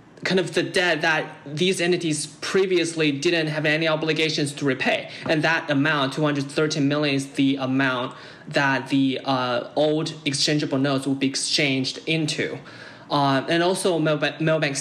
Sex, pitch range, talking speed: male, 140-170 Hz, 140 wpm